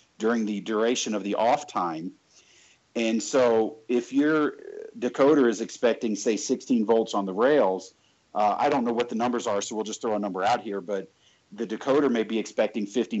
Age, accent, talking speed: 50-69, American, 195 wpm